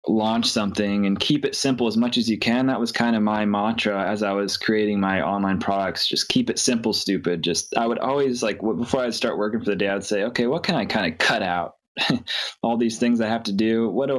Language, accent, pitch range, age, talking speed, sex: English, American, 95-115 Hz, 20-39, 250 wpm, male